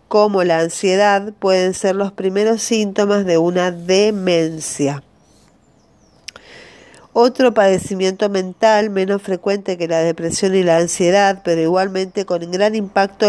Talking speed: 120 wpm